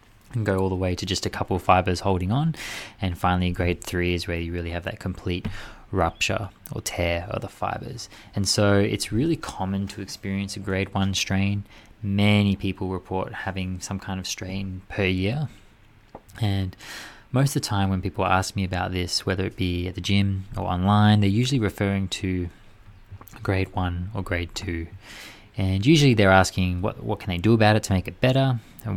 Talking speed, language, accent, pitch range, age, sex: 195 wpm, English, Australian, 95-110 Hz, 20-39, male